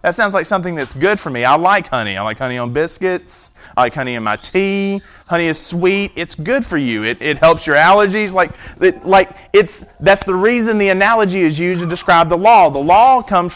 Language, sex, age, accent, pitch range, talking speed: English, male, 30-49, American, 145-195 Hz, 230 wpm